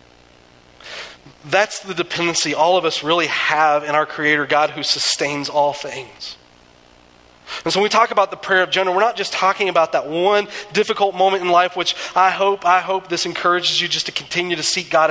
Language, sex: English, male